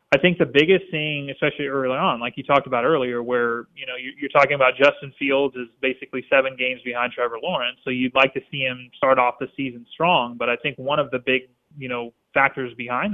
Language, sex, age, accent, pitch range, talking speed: English, male, 30-49, American, 125-145 Hz, 235 wpm